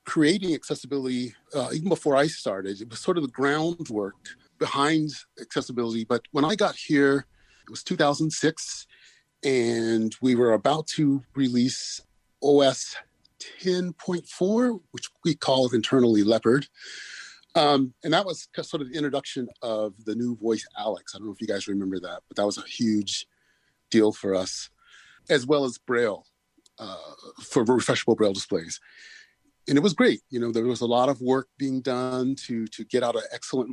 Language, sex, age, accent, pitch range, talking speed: English, male, 30-49, American, 115-150 Hz, 165 wpm